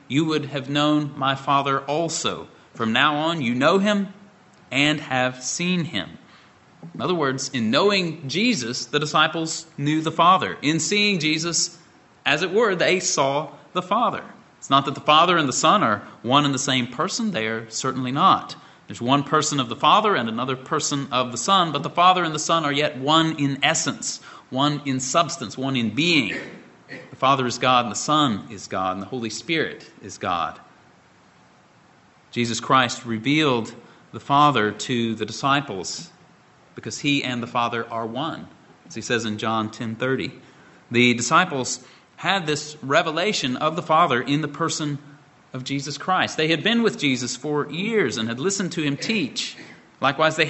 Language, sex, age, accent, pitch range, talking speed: English, male, 30-49, American, 130-165 Hz, 180 wpm